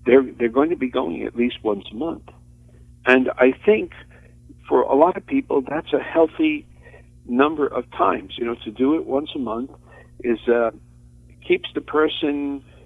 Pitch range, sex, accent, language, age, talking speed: 110-140 Hz, male, American, English, 60-79, 175 wpm